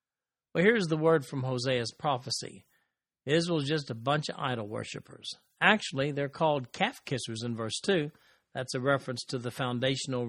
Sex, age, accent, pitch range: male, 50-69, American, 125-170 Hz